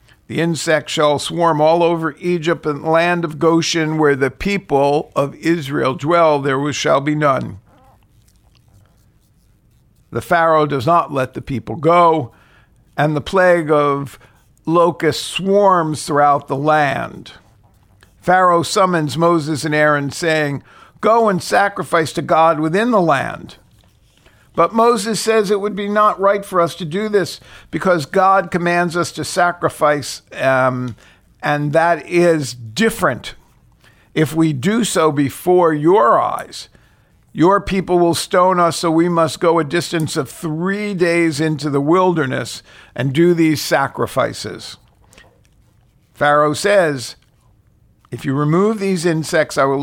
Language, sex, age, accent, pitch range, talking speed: English, male, 50-69, American, 140-175 Hz, 135 wpm